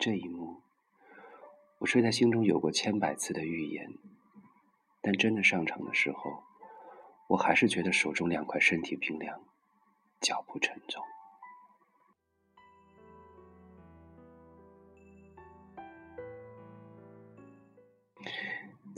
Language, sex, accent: Chinese, male, native